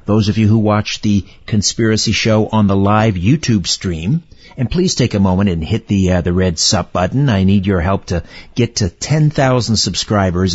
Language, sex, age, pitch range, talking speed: English, male, 50-69, 95-115 Hz, 200 wpm